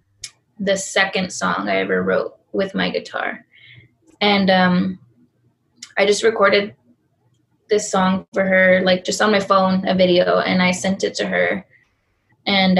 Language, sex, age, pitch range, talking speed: English, female, 10-29, 180-195 Hz, 150 wpm